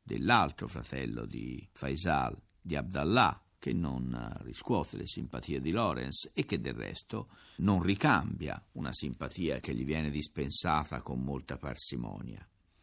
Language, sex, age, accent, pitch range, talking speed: Italian, male, 50-69, native, 80-110 Hz, 130 wpm